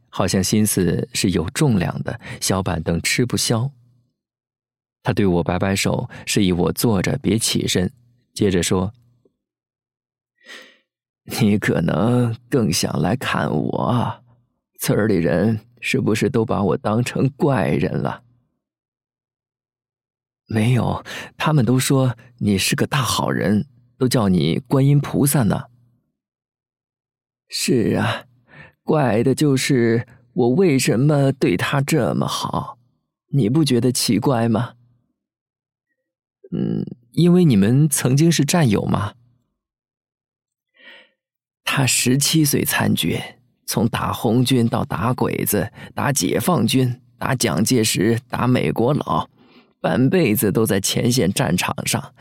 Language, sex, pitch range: Chinese, male, 115-130 Hz